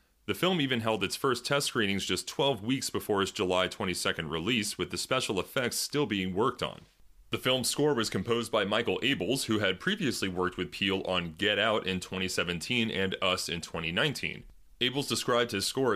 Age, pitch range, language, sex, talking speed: 30-49, 95-120 Hz, English, male, 190 wpm